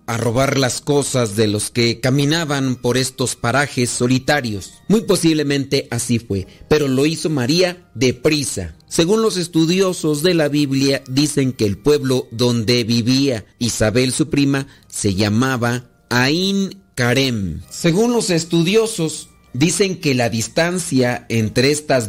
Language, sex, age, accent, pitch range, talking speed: Spanish, male, 40-59, Mexican, 125-155 Hz, 135 wpm